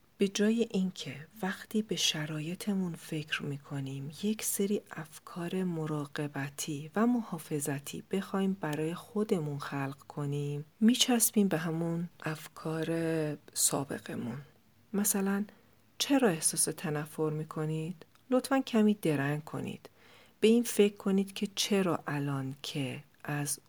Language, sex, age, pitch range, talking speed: Persian, female, 40-59, 145-195 Hz, 110 wpm